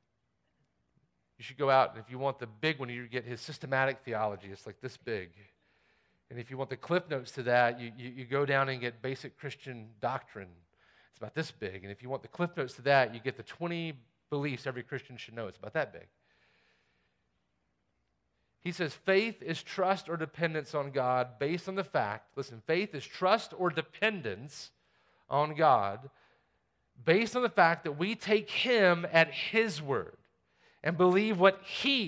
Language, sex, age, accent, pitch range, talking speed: English, male, 40-59, American, 120-195 Hz, 190 wpm